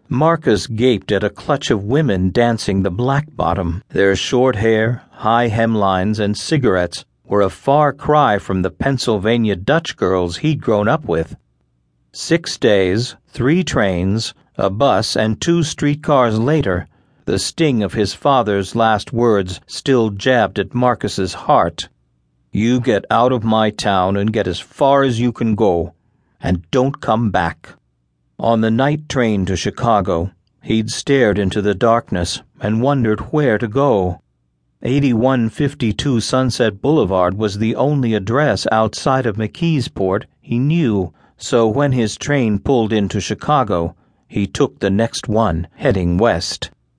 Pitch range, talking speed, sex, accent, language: 95-130 Hz, 145 wpm, male, American, English